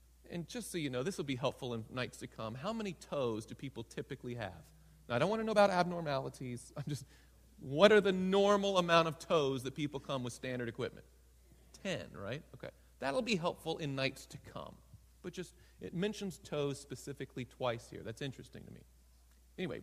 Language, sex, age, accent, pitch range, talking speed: English, male, 40-59, American, 115-185 Hz, 200 wpm